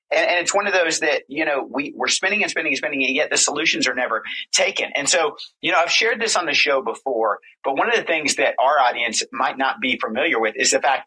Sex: male